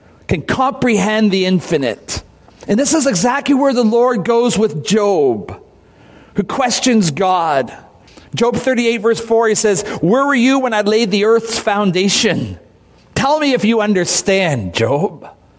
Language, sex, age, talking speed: English, male, 50-69, 145 wpm